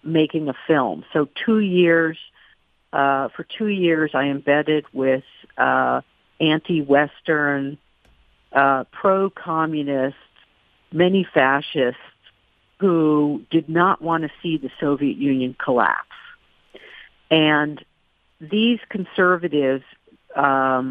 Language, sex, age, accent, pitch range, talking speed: English, female, 50-69, American, 135-160 Hz, 95 wpm